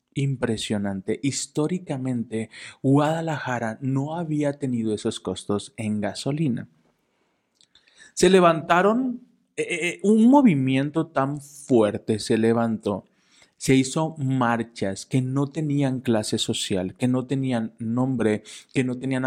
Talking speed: 105 wpm